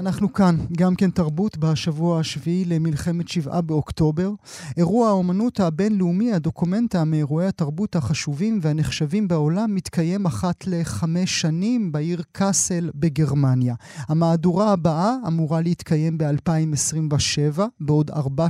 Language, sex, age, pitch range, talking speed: Hebrew, male, 30-49, 150-185 Hz, 105 wpm